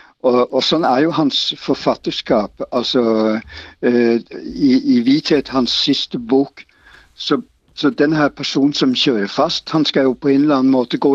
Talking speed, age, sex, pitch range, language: 170 wpm, 60-79, male, 125-155 Hz, Danish